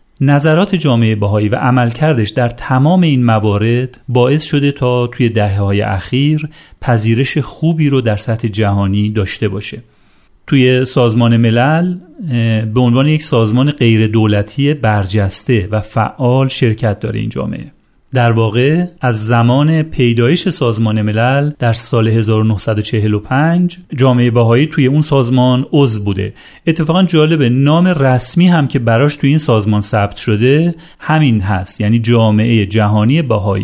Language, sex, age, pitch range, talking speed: Persian, male, 40-59, 110-145 Hz, 135 wpm